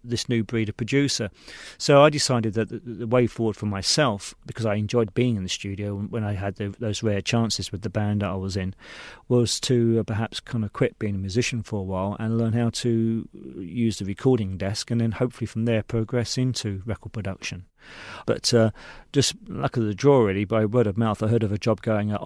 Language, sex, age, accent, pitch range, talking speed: English, male, 40-59, British, 100-115 Hz, 225 wpm